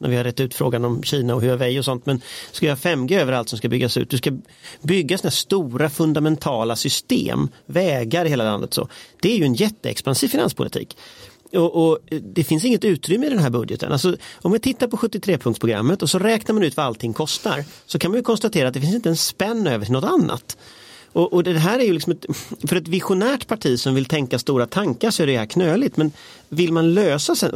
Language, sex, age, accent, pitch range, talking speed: Swedish, male, 40-59, native, 125-185 Hz, 225 wpm